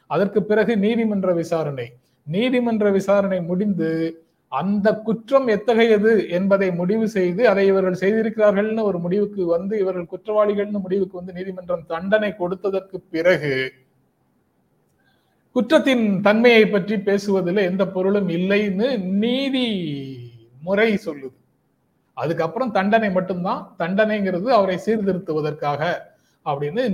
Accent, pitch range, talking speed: native, 170-215 Hz, 100 wpm